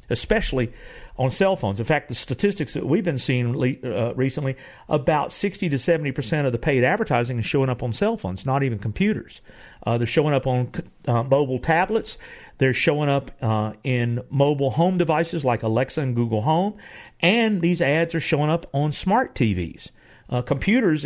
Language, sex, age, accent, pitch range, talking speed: English, male, 50-69, American, 120-160 Hz, 180 wpm